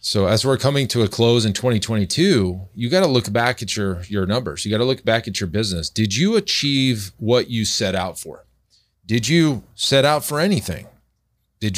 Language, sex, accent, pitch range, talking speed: English, male, American, 100-125 Hz, 210 wpm